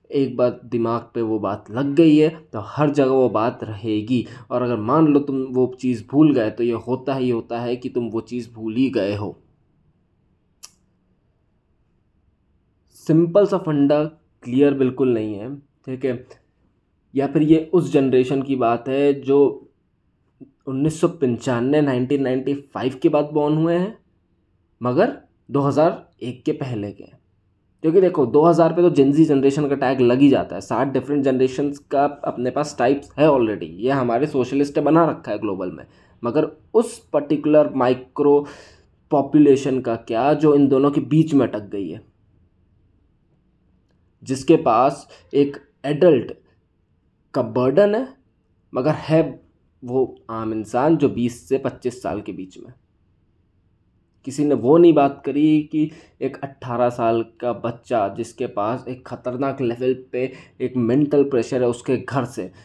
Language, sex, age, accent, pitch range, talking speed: Hindi, male, 20-39, native, 115-145 Hz, 155 wpm